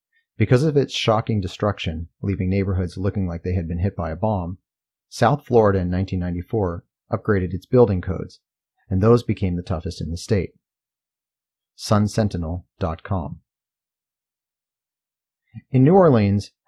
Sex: male